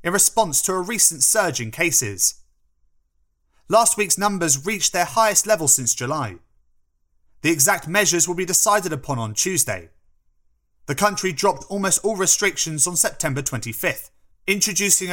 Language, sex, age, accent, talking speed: English, male, 30-49, British, 145 wpm